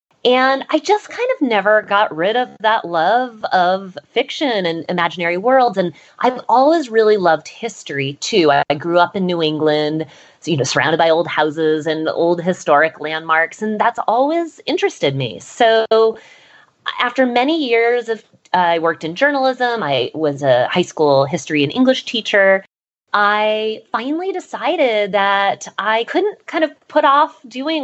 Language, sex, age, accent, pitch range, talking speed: English, female, 20-39, American, 170-255 Hz, 160 wpm